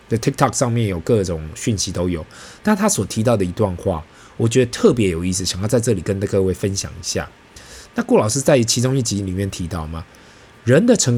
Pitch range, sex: 95-130 Hz, male